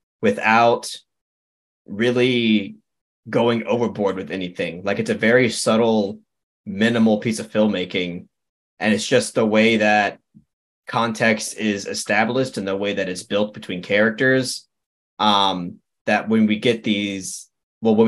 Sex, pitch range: male, 95-115 Hz